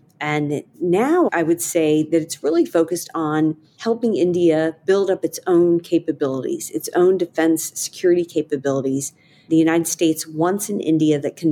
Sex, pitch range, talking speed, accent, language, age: female, 155-175 Hz, 155 wpm, American, English, 40-59